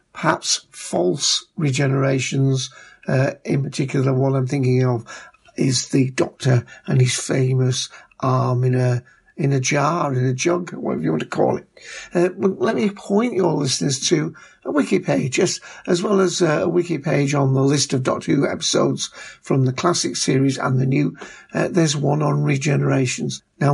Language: English